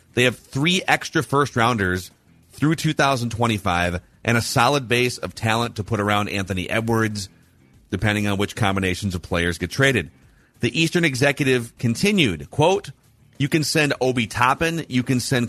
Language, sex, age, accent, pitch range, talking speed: English, male, 30-49, American, 105-130 Hz, 155 wpm